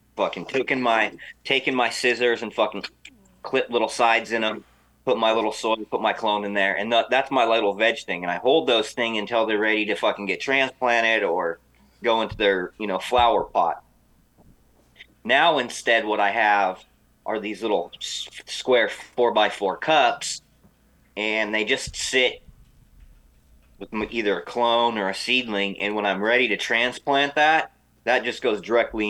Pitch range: 100-115 Hz